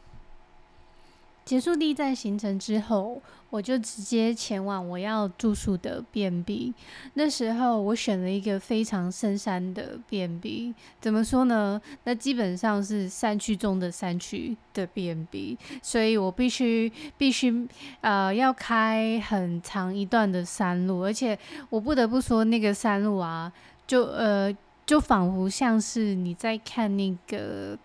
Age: 20-39